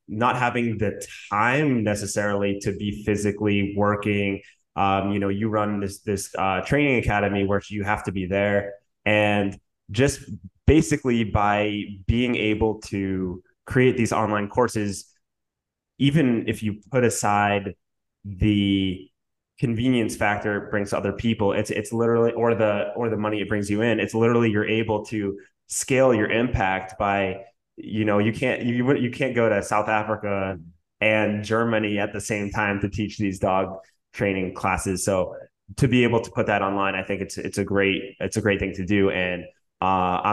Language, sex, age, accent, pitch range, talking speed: English, male, 20-39, American, 100-115 Hz, 170 wpm